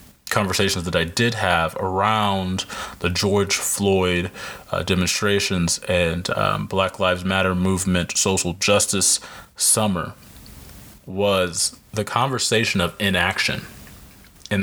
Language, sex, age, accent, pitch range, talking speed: English, male, 30-49, American, 95-115 Hz, 105 wpm